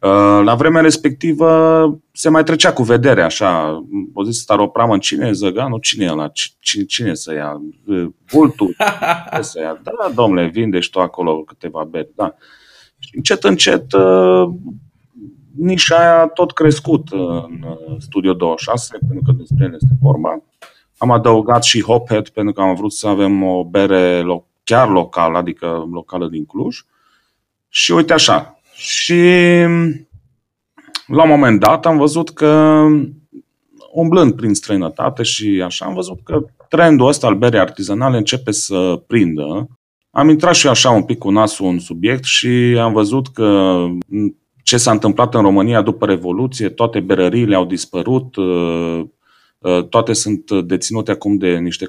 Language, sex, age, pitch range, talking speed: Romanian, male, 30-49, 95-145 Hz, 150 wpm